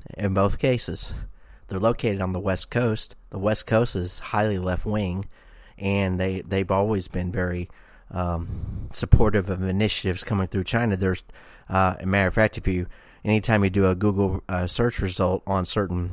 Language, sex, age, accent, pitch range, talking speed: English, male, 30-49, American, 90-105 Hz, 175 wpm